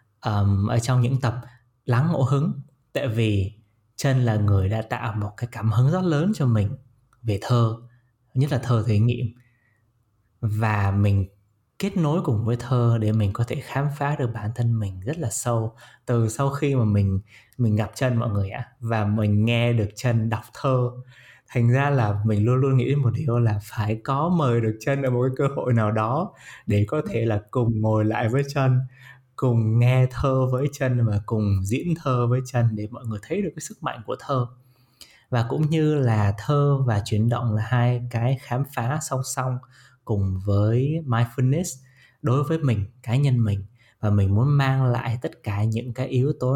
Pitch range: 110-135 Hz